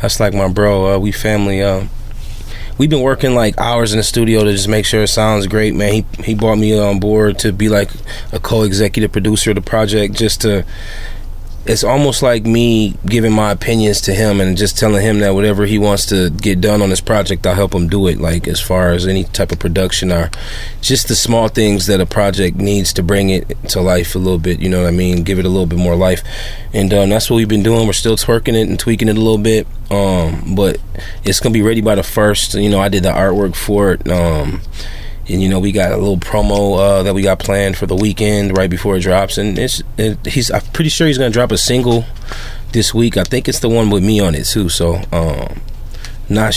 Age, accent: 20-39, American